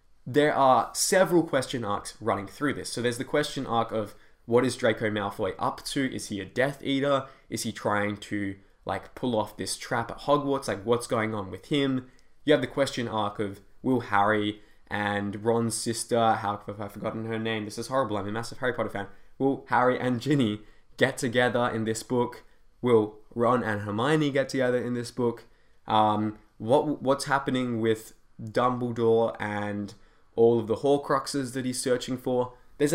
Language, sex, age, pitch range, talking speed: English, male, 10-29, 110-140 Hz, 185 wpm